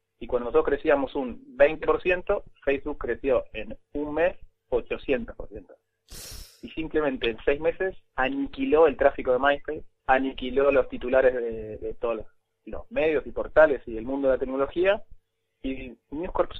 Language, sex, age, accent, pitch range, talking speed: Spanish, male, 20-39, Argentinian, 130-165 Hz, 150 wpm